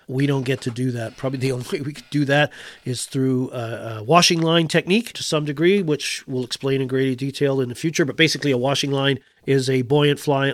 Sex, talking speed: male, 235 wpm